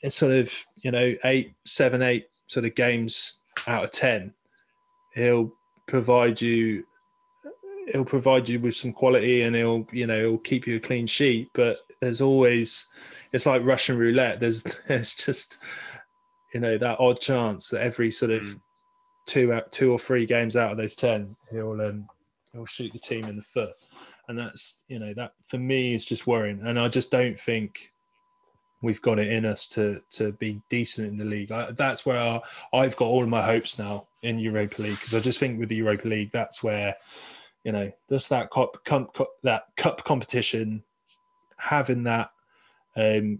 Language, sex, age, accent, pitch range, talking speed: English, male, 20-39, British, 110-130 Hz, 185 wpm